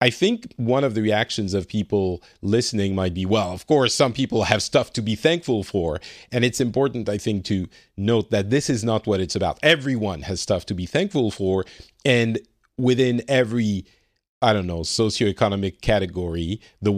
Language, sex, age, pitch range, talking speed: English, male, 40-59, 95-120 Hz, 185 wpm